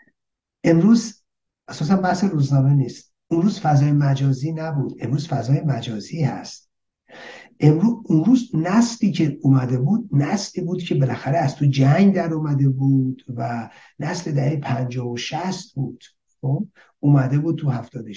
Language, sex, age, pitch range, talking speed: Persian, male, 50-69, 135-200 Hz, 130 wpm